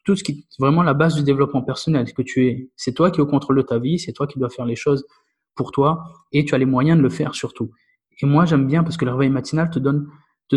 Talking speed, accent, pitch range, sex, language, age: 295 wpm, French, 130-170 Hz, male, French, 20-39